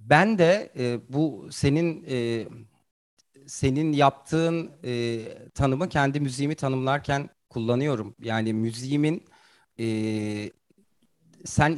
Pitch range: 125-165 Hz